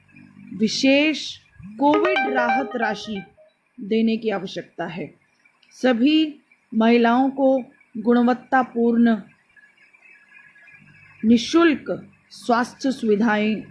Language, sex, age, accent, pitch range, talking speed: Hindi, female, 30-49, native, 220-265 Hz, 65 wpm